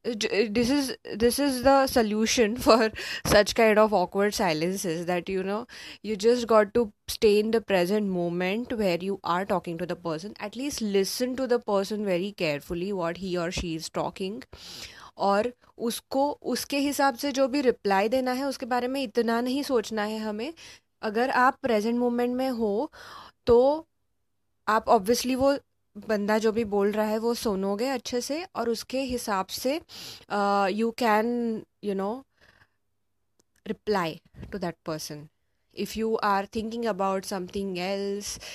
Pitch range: 180-235 Hz